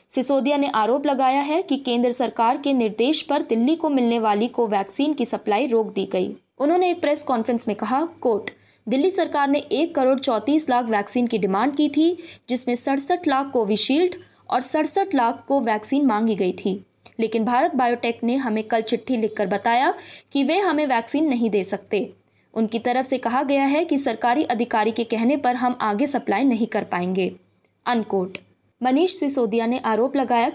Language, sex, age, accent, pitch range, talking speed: Hindi, female, 20-39, native, 220-280 Hz, 185 wpm